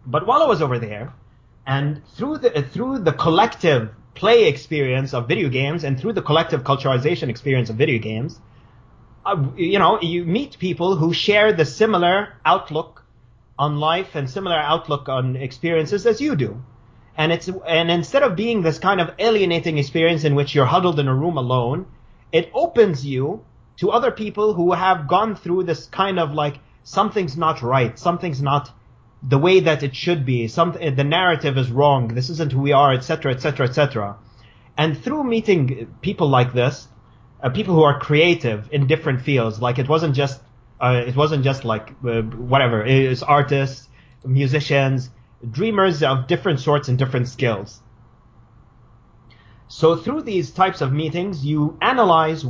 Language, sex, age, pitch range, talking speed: English, male, 30-49, 125-170 Hz, 170 wpm